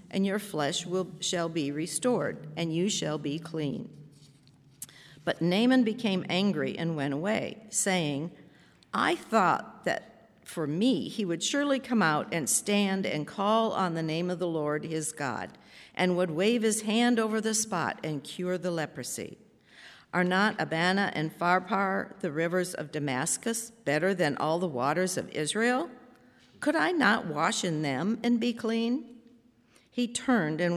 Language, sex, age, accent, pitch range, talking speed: English, female, 50-69, American, 160-220 Hz, 160 wpm